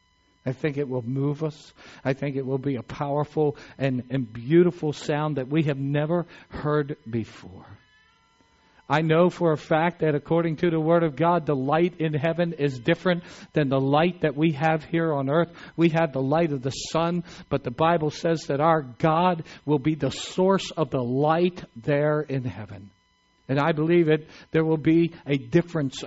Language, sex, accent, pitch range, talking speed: English, male, American, 145-175 Hz, 190 wpm